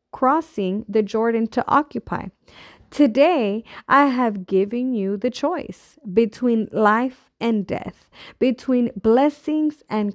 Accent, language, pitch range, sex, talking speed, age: American, English, 210-275 Hz, female, 110 wpm, 20-39